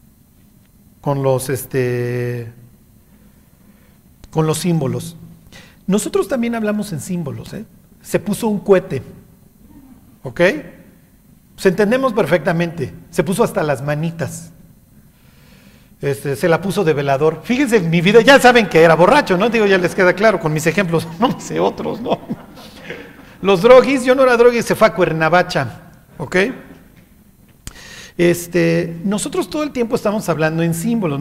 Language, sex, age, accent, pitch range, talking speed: Spanish, male, 50-69, Mexican, 160-215 Hz, 140 wpm